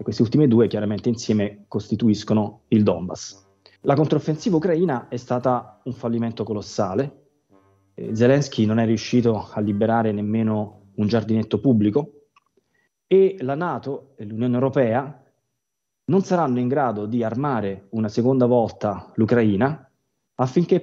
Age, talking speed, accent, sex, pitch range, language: 30-49, 125 wpm, native, male, 105-135 Hz, Italian